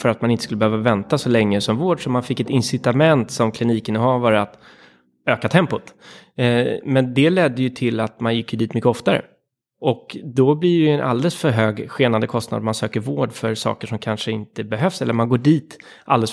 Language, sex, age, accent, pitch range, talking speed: Swedish, male, 20-39, native, 110-135 Hz, 205 wpm